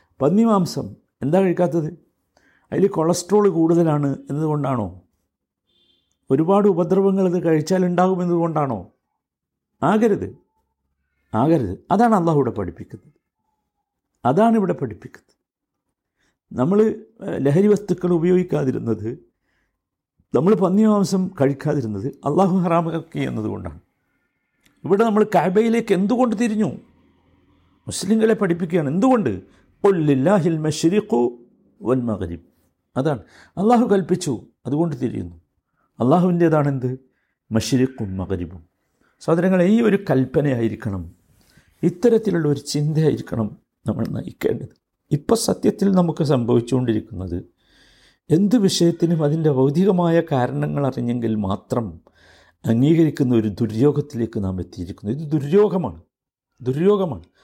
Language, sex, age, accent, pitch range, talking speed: Malayalam, male, 60-79, native, 115-185 Hz, 85 wpm